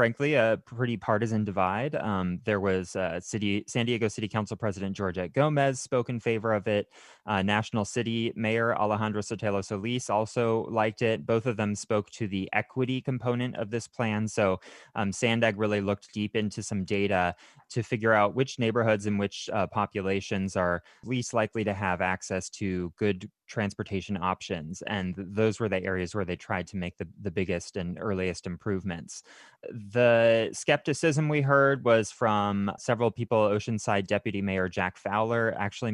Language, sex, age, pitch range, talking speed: English, male, 20-39, 100-120 Hz, 170 wpm